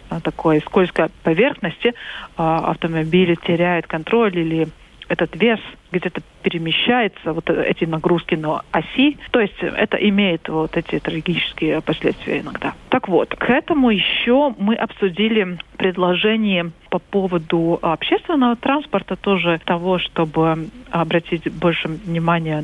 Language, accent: Russian, native